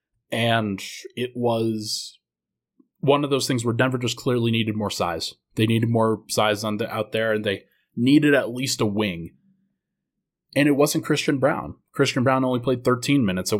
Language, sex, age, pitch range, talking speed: English, male, 20-39, 110-130 Hz, 170 wpm